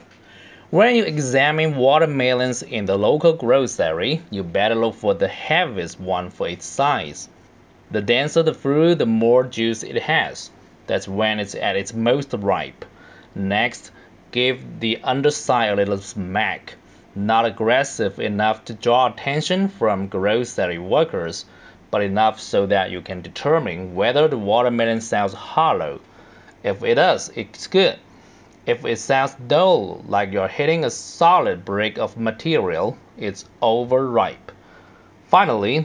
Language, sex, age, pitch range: Chinese, male, 30-49, 105-140 Hz